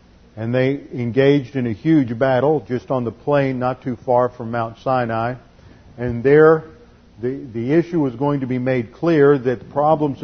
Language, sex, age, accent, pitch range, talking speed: English, male, 50-69, American, 115-140 Hz, 175 wpm